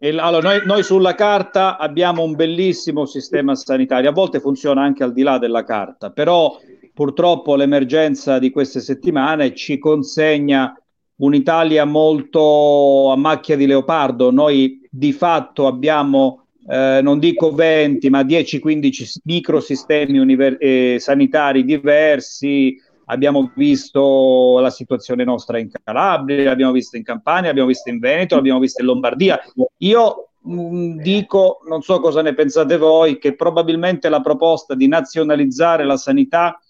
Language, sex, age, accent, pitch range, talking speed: Italian, male, 40-59, native, 135-170 Hz, 135 wpm